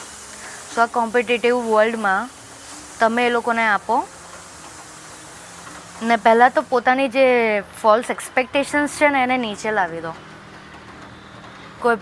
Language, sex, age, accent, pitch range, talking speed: Gujarati, female, 20-39, native, 220-260 Hz, 105 wpm